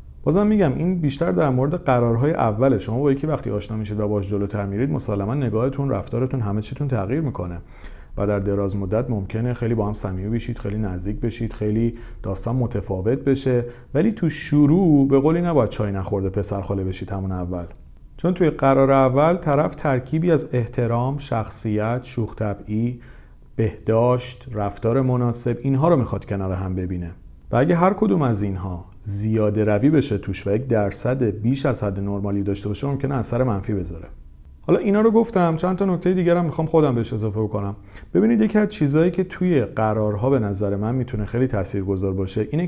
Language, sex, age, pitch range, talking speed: Persian, male, 40-59, 100-135 Hz, 175 wpm